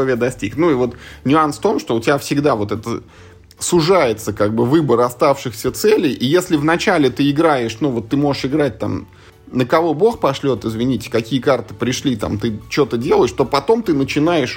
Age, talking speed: 20-39, 185 wpm